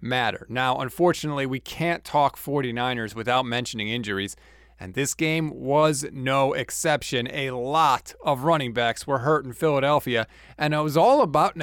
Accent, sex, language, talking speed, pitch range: American, male, English, 160 wpm, 135-205 Hz